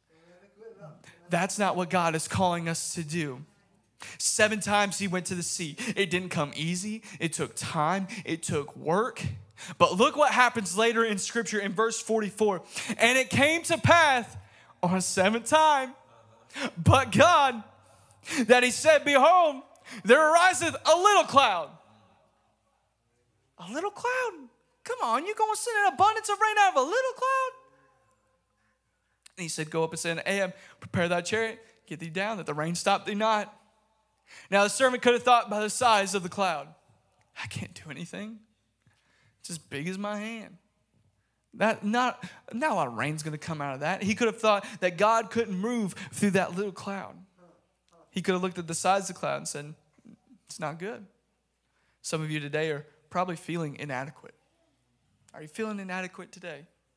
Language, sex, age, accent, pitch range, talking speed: English, male, 20-39, American, 165-230 Hz, 180 wpm